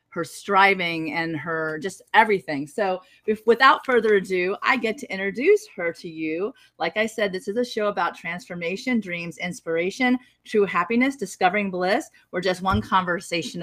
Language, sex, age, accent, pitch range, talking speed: English, female, 30-49, American, 175-220 Hz, 160 wpm